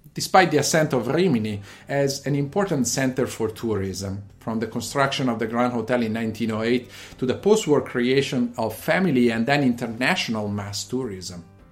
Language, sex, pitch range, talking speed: English, male, 115-150 Hz, 160 wpm